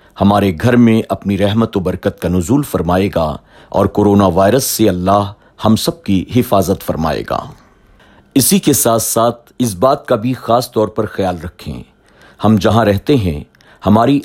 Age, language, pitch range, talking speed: 50-69, Urdu, 95-120 Hz, 170 wpm